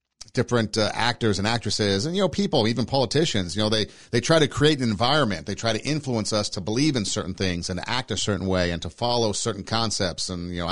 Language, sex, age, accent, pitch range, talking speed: English, male, 50-69, American, 95-125 Hz, 245 wpm